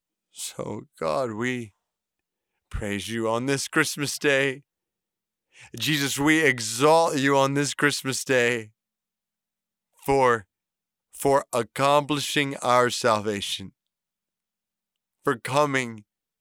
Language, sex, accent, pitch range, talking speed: English, male, American, 125-155 Hz, 90 wpm